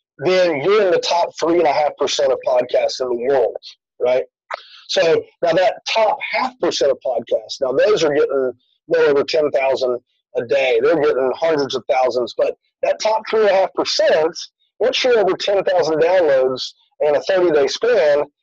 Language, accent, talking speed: English, American, 180 wpm